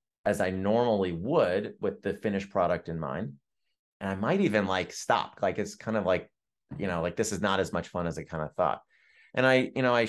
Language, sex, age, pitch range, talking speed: English, male, 30-49, 105-130 Hz, 240 wpm